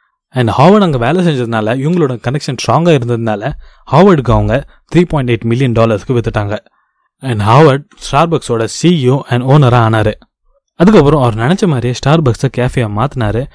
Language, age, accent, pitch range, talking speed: Tamil, 20-39, native, 115-155 Hz, 135 wpm